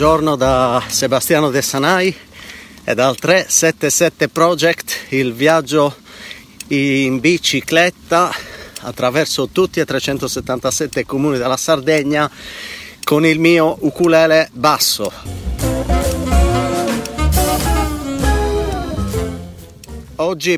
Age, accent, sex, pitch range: 40-59, native, male, 135-165 Hz